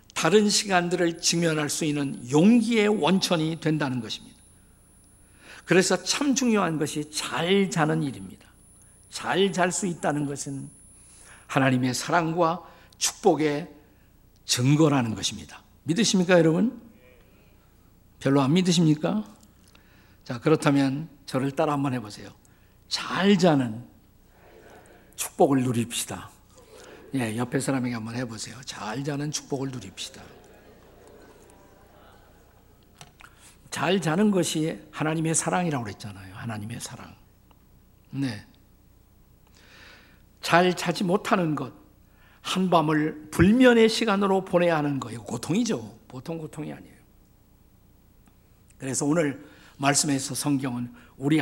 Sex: male